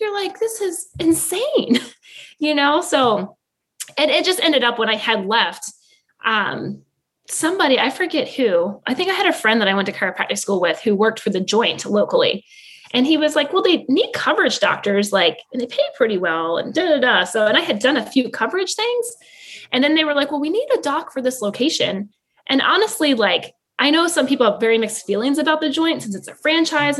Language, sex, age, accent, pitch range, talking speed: English, female, 20-39, American, 220-315 Hz, 220 wpm